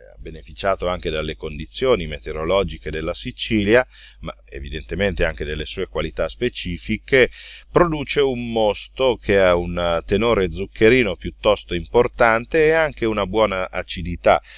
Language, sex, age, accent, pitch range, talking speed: Italian, male, 40-59, native, 85-110 Hz, 120 wpm